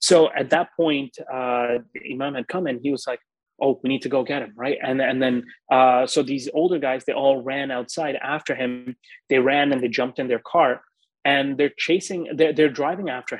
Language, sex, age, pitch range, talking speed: English, male, 30-49, 125-155 Hz, 225 wpm